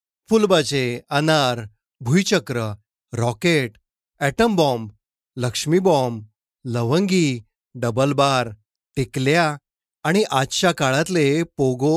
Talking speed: 75 wpm